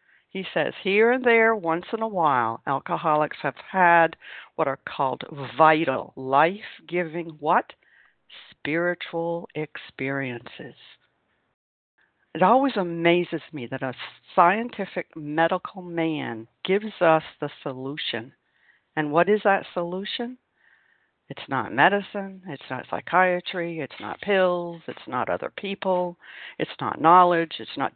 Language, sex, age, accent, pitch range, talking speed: English, female, 60-79, American, 155-190 Hz, 120 wpm